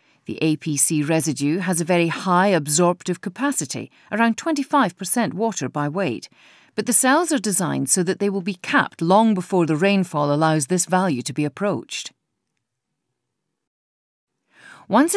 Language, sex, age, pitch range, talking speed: English, female, 40-59, 155-210 Hz, 140 wpm